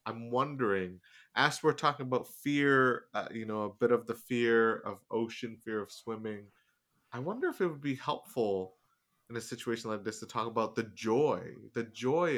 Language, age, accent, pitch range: English, 30-49, American, 100-130 Hz